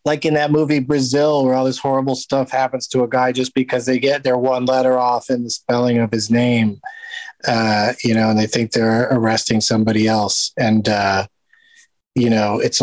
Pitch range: 115-135 Hz